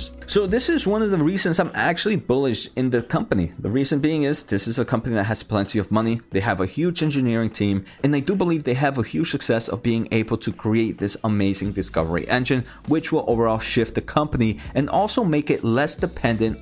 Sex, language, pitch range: male, English, 100-140 Hz